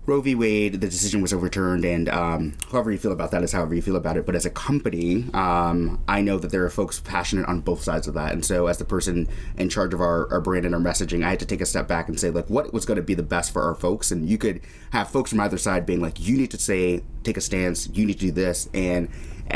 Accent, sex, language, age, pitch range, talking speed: American, male, English, 30-49, 85-100 Hz, 290 wpm